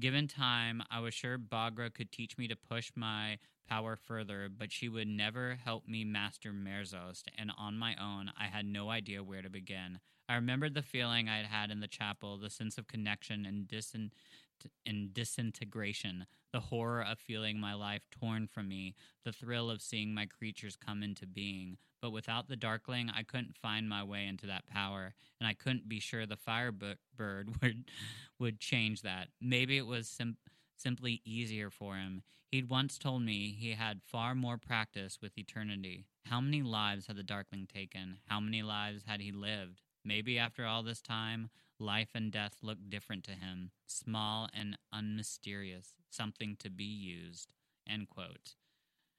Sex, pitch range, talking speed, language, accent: male, 100-120 Hz, 175 wpm, English, American